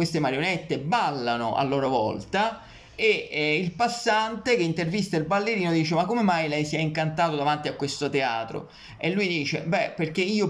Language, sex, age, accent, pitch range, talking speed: Italian, male, 30-49, native, 145-185 Hz, 185 wpm